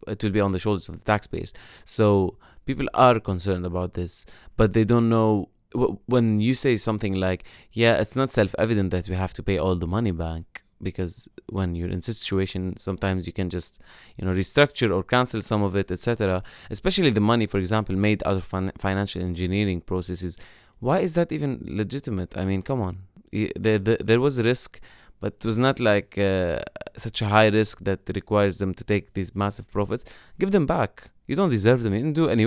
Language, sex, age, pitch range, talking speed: English, male, 20-39, 95-115 Hz, 200 wpm